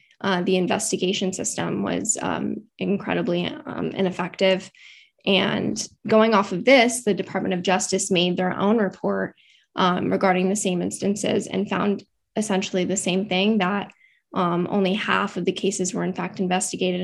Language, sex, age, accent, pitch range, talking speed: English, female, 10-29, American, 185-210 Hz, 155 wpm